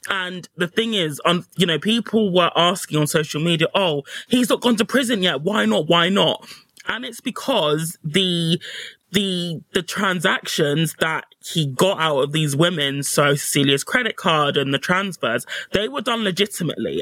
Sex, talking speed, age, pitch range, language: male, 175 wpm, 20-39, 155-195 Hz, English